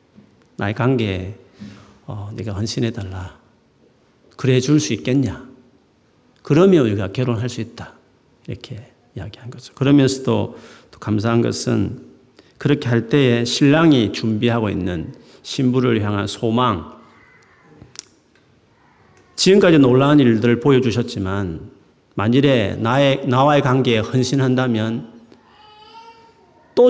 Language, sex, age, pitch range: Korean, male, 40-59, 110-145 Hz